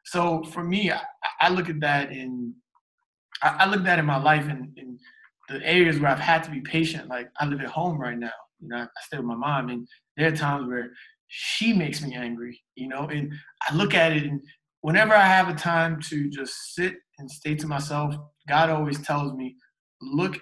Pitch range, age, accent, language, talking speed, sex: 145-175 Hz, 20-39, American, English, 215 wpm, male